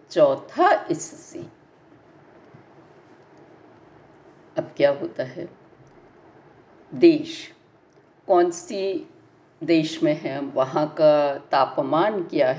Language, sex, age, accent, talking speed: Hindi, female, 60-79, native, 75 wpm